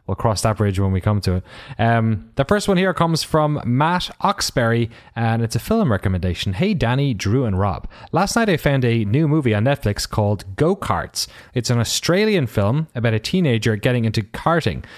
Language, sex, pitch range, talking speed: English, male, 105-140 Hz, 200 wpm